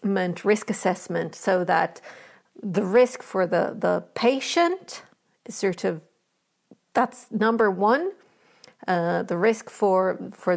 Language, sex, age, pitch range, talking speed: English, female, 50-69, 200-255 Hz, 120 wpm